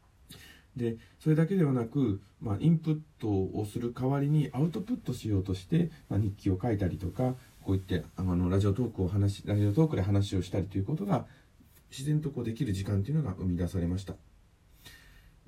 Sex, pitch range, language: male, 95-135 Hz, Japanese